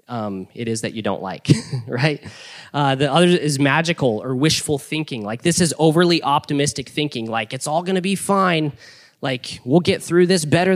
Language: English